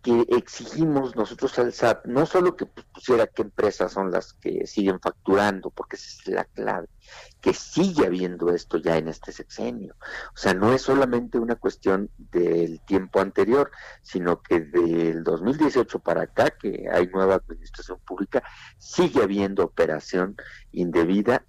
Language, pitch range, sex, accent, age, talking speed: Spanish, 95-135 Hz, male, Mexican, 50-69, 150 wpm